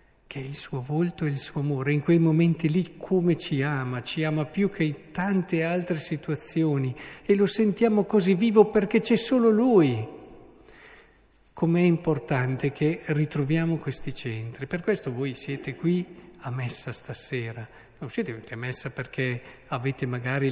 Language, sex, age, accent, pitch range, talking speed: Italian, male, 50-69, native, 130-165 Hz, 160 wpm